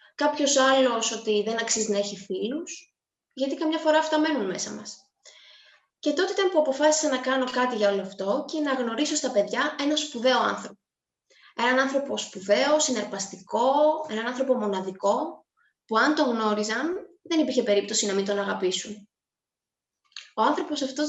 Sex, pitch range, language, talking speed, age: female, 215-300 Hz, Greek, 155 wpm, 20-39